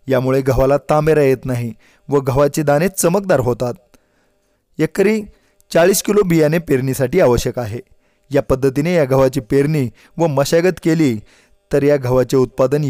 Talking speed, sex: 135 wpm, male